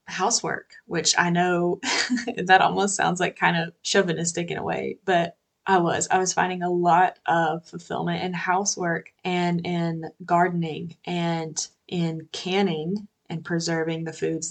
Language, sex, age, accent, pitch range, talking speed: English, female, 20-39, American, 170-185 Hz, 150 wpm